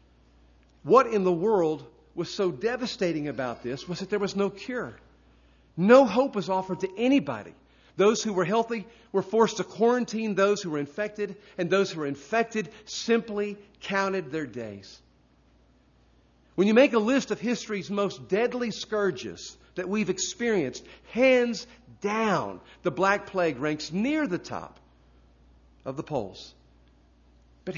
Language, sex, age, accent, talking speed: English, male, 50-69, American, 145 wpm